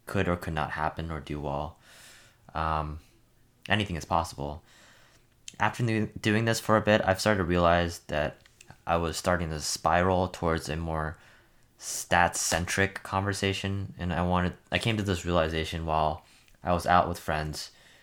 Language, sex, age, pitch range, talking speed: English, male, 20-39, 80-100 Hz, 160 wpm